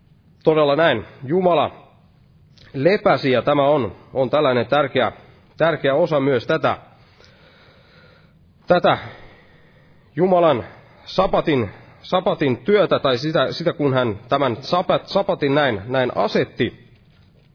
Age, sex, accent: 30-49, male, native